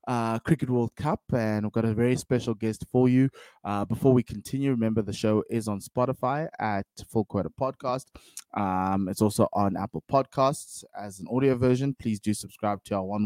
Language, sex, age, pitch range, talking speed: English, male, 20-39, 100-125 Hz, 195 wpm